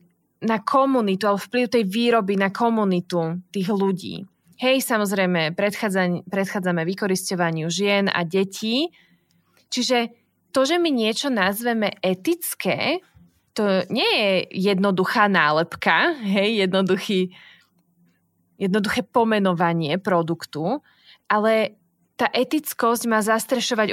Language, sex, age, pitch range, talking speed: Slovak, female, 20-39, 185-245 Hz, 95 wpm